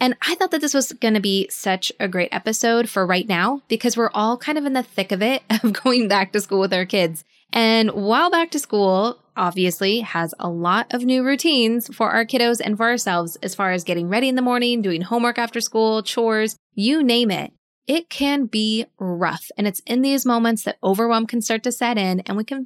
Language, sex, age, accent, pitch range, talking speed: English, female, 20-39, American, 190-250 Hz, 230 wpm